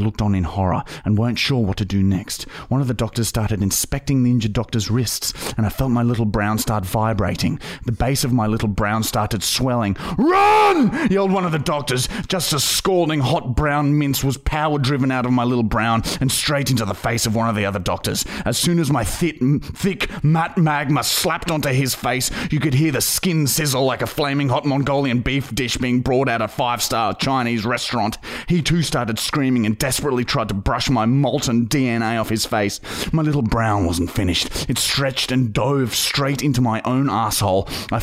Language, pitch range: English, 110-140 Hz